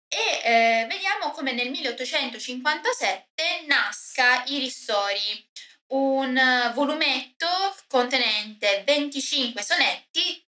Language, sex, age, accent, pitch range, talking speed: Italian, female, 20-39, native, 210-275 Hz, 80 wpm